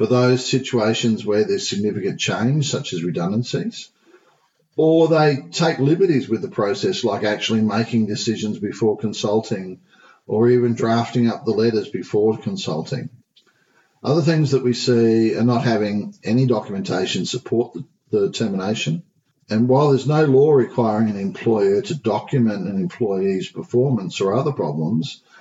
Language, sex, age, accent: English, male, 50-69, Australian